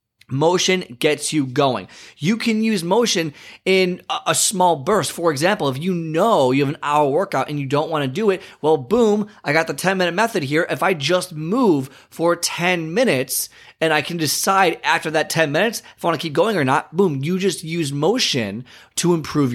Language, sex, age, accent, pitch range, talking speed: English, male, 20-39, American, 130-175 Hz, 210 wpm